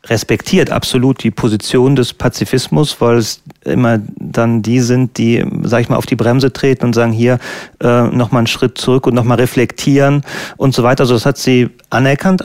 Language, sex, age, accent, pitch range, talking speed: German, male, 30-49, German, 115-135 Hz, 185 wpm